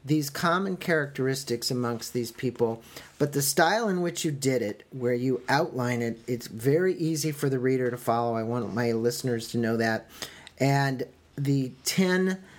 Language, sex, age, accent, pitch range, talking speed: English, male, 40-59, American, 120-150 Hz, 170 wpm